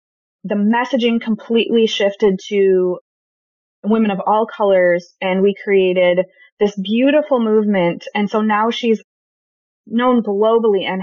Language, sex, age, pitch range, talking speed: English, female, 20-39, 195-245 Hz, 120 wpm